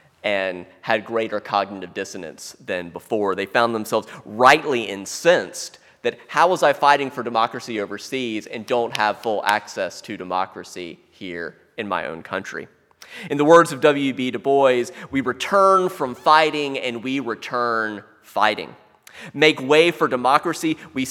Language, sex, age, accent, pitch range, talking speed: English, male, 30-49, American, 105-155 Hz, 150 wpm